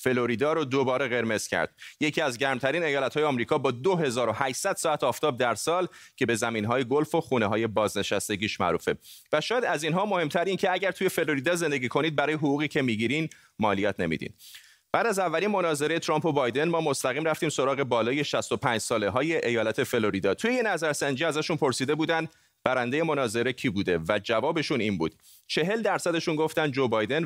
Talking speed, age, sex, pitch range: 170 wpm, 30-49, male, 125-170 Hz